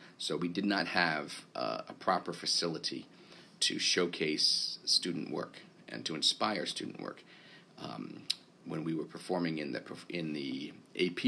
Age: 40-59